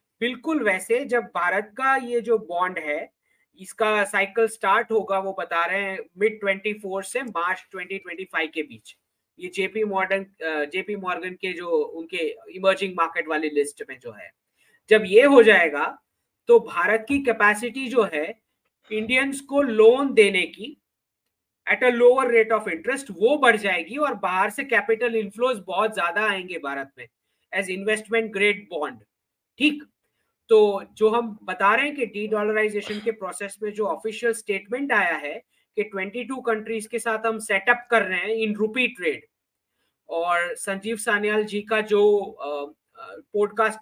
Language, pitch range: English, 195-240 Hz